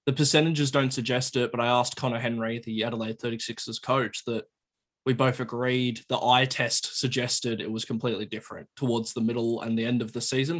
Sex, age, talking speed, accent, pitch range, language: male, 20-39, 200 wpm, Australian, 115-130 Hz, English